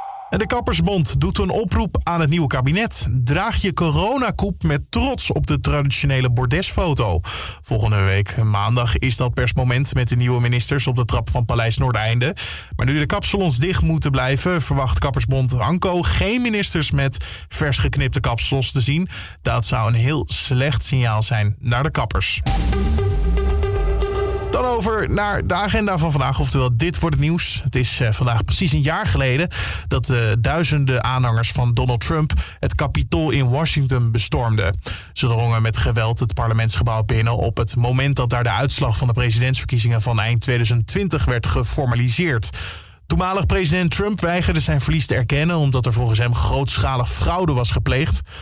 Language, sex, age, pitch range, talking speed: English, male, 20-39, 115-140 Hz, 160 wpm